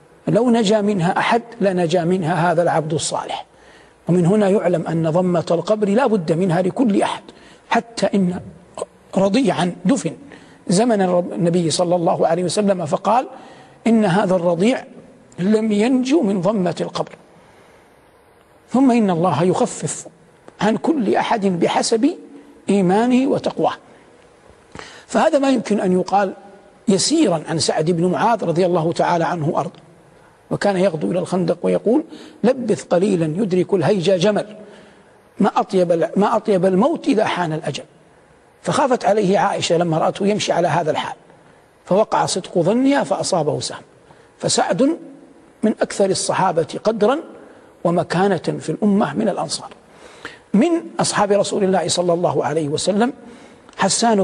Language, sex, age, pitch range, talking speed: Arabic, male, 60-79, 175-215 Hz, 125 wpm